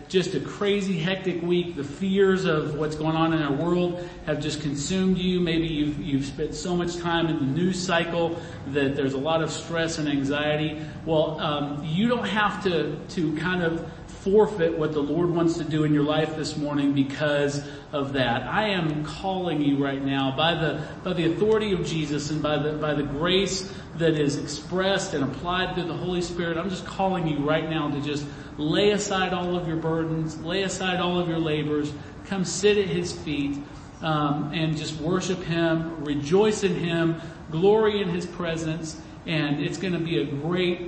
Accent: American